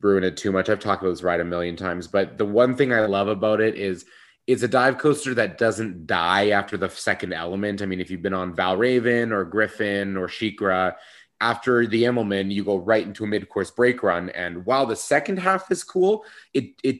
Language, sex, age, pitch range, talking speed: English, male, 30-49, 95-115 Hz, 220 wpm